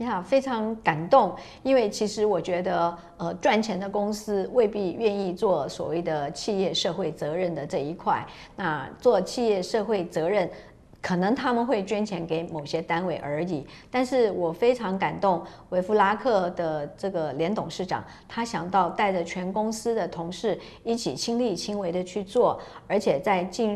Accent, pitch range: American, 175-225 Hz